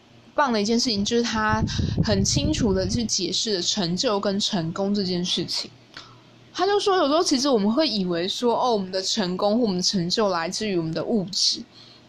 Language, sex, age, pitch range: Chinese, female, 20-39, 185-255 Hz